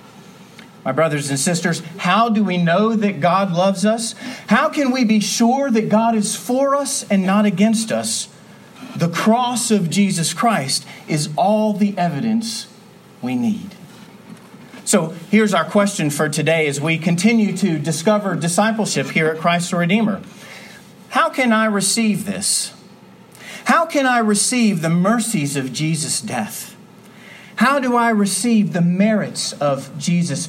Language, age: English, 40-59